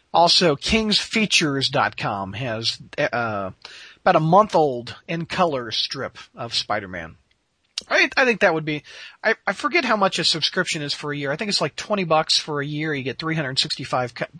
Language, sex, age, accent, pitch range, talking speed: English, male, 40-59, American, 130-175 Hz, 165 wpm